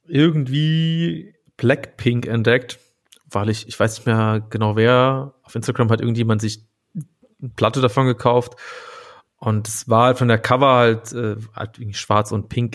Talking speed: 160 wpm